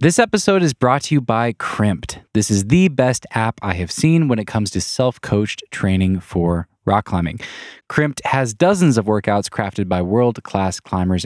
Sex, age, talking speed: male, 20-39, 180 wpm